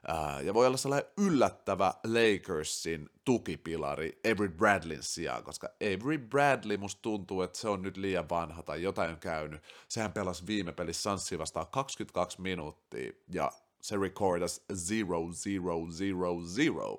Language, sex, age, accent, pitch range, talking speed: Finnish, male, 30-49, native, 90-115 Hz, 130 wpm